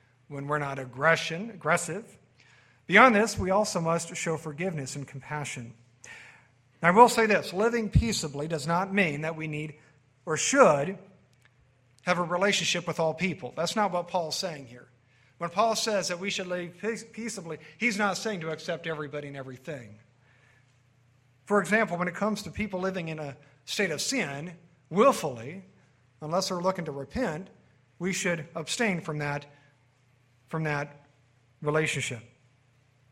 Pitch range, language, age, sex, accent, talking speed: 130-185 Hz, English, 50-69, male, American, 150 wpm